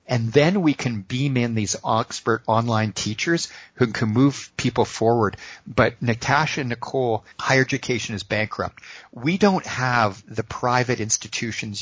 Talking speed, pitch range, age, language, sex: 145 wpm, 110-130 Hz, 50-69, English, male